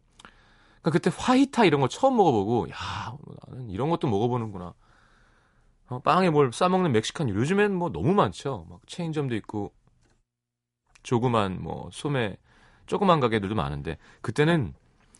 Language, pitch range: Korean, 105-155 Hz